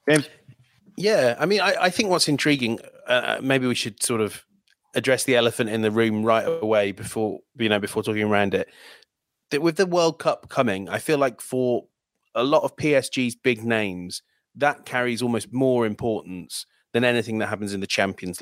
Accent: British